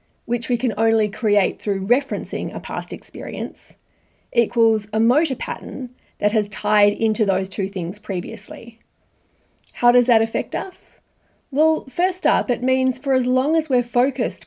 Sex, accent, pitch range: female, Australian, 210-255 Hz